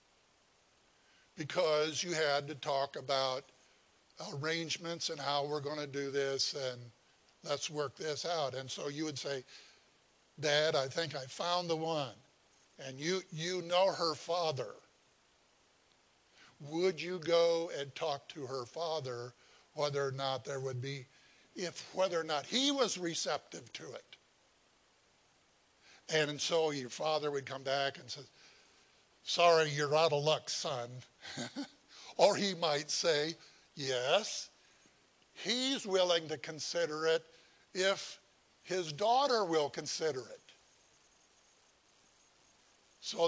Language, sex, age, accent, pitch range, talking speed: English, male, 60-79, American, 140-170 Hz, 130 wpm